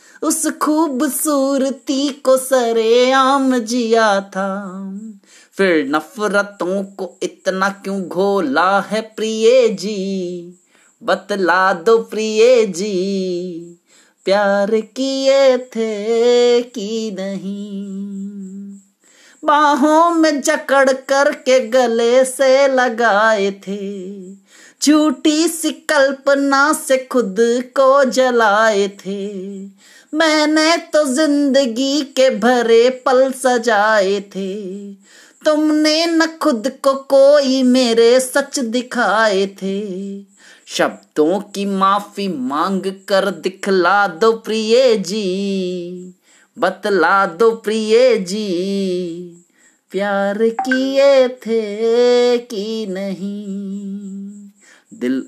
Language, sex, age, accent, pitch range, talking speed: Hindi, male, 30-49, native, 195-260 Hz, 85 wpm